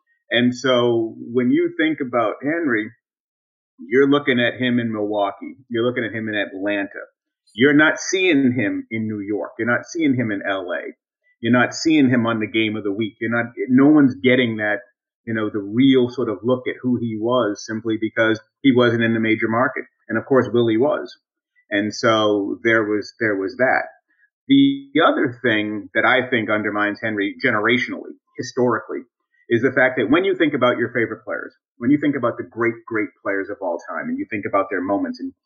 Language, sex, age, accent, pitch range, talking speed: English, male, 30-49, American, 110-145 Hz, 200 wpm